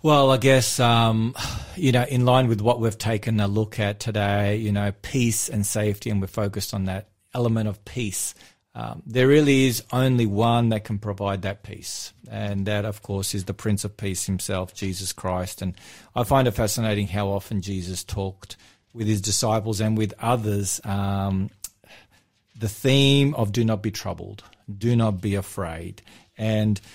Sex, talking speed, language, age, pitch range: male, 180 wpm, English, 40-59, 100-120 Hz